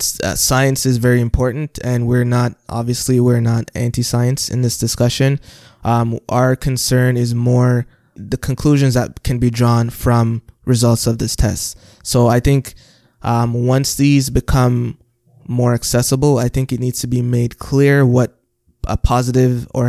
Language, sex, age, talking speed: English, male, 20-39, 155 wpm